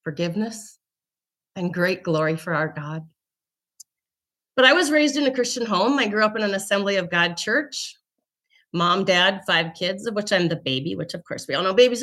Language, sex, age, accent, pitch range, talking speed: English, female, 30-49, American, 165-235 Hz, 200 wpm